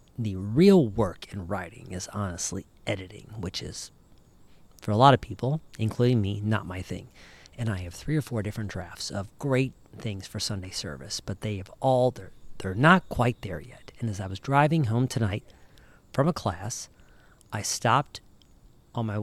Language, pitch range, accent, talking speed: English, 100-125 Hz, American, 180 wpm